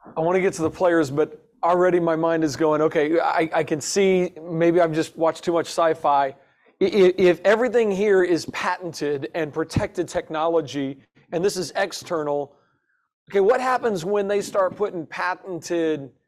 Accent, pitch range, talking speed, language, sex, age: American, 155-200 Hz, 165 wpm, English, male, 40-59